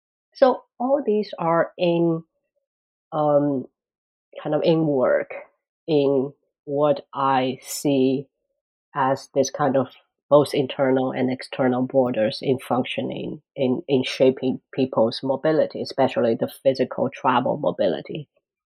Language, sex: English, female